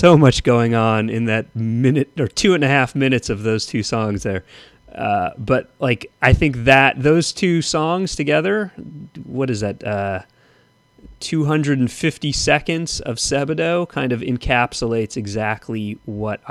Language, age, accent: English, 30-49, American